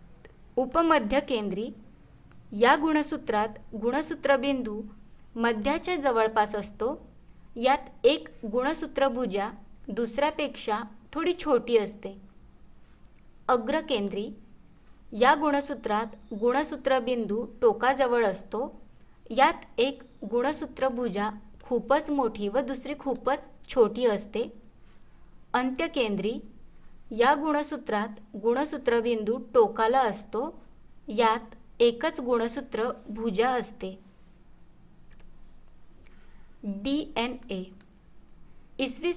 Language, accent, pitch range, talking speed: Marathi, native, 220-275 Hz, 70 wpm